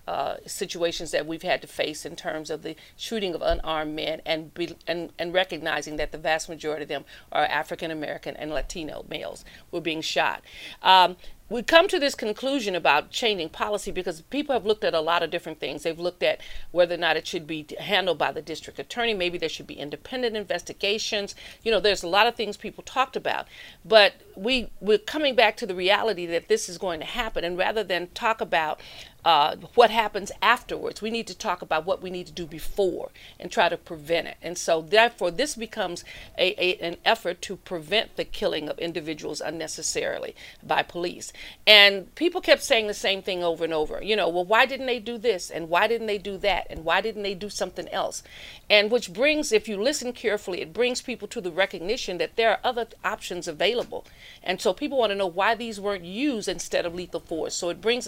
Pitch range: 170-225 Hz